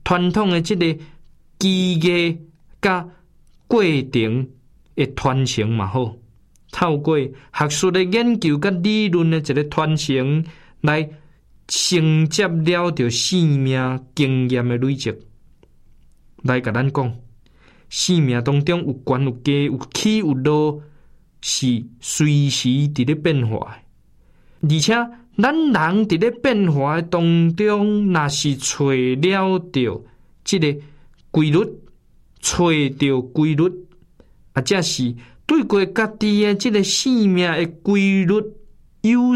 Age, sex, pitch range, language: 20-39, male, 130-180 Hz, Chinese